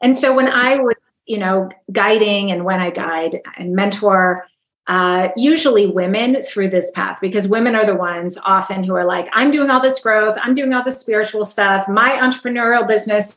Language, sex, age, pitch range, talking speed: English, female, 30-49, 190-245 Hz, 195 wpm